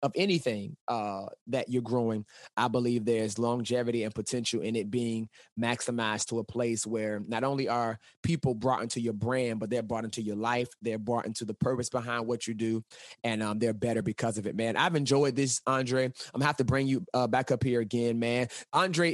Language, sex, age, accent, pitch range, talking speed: English, male, 20-39, American, 120-145 Hz, 215 wpm